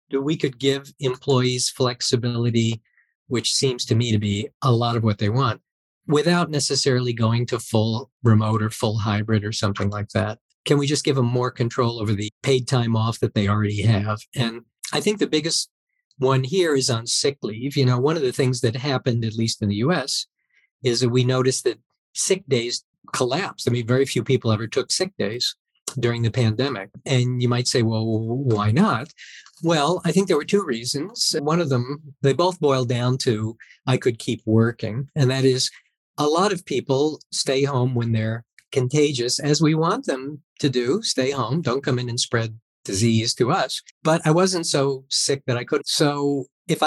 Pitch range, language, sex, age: 115-145 Hz, English, male, 50-69